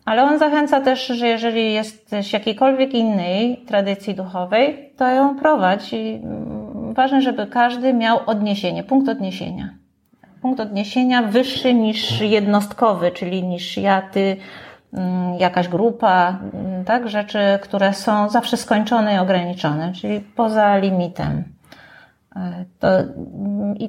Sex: female